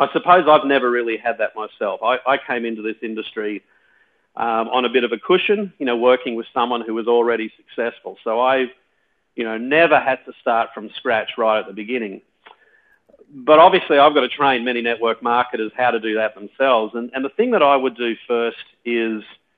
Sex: male